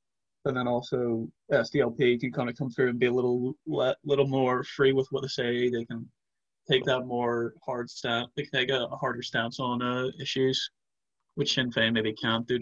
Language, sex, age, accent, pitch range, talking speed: English, male, 30-49, American, 115-135 Hz, 210 wpm